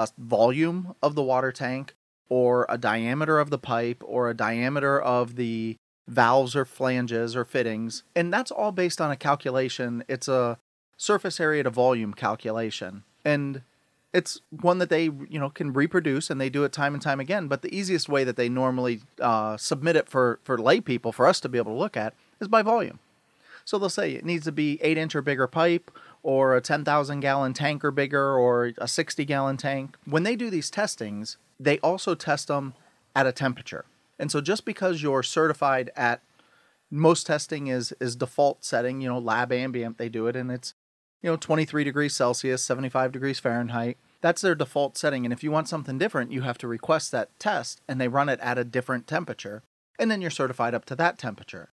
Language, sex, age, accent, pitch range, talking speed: English, male, 30-49, American, 125-155 Hz, 200 wpm